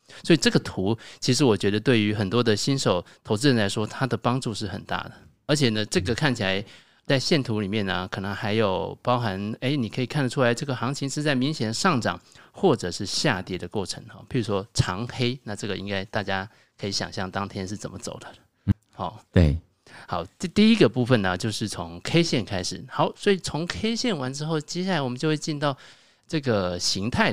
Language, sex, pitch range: Chinese, male, 100-135 Hz